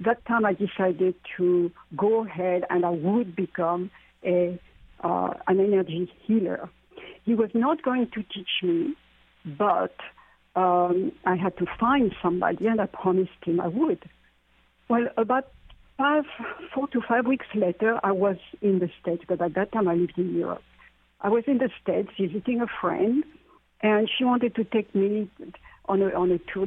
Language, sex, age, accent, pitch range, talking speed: English, female, 60-79, French, 180-225 Hz, 170 wpm